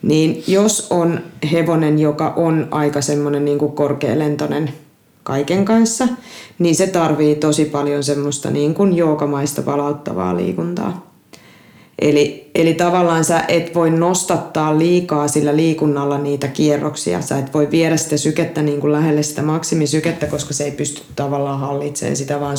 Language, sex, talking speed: Finnish, female, 145 wpm